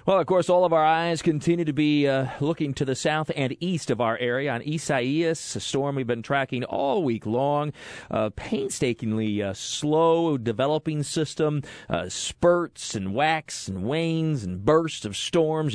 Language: English